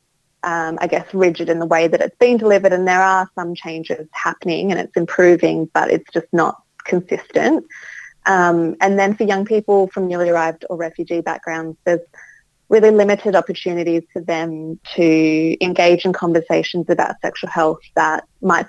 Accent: Australian